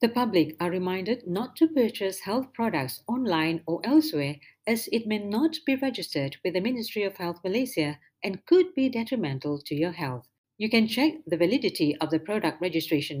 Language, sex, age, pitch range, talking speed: Malay, female, 50-69, 155-230 Hz, 180 wpm